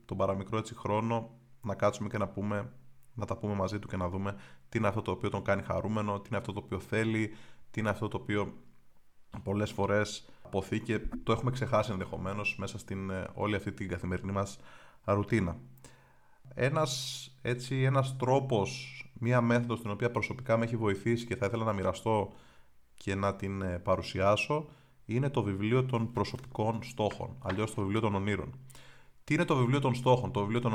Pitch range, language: 100-125 Hz, Greek